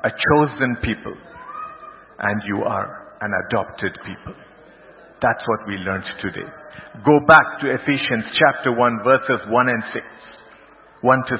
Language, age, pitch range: English, 50-69, 135-185 Hz